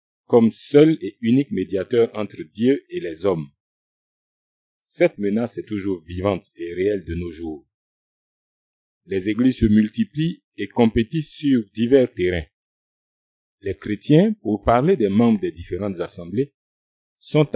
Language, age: French, 50-69